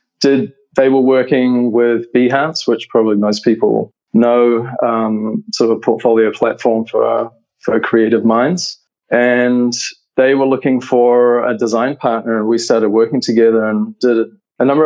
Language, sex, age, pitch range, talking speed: English, male, 20-39, 115-130 Hz, 155 wpm